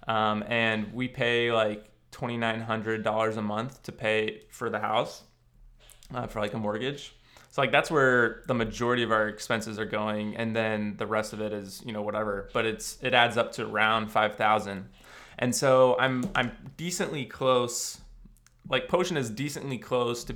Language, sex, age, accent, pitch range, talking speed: English, male, 20-39, American, 110-120 Hz, 175 wpm